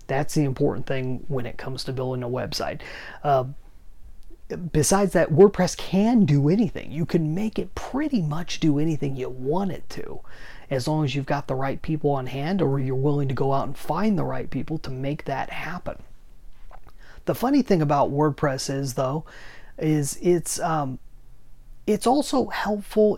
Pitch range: 135-180 Hz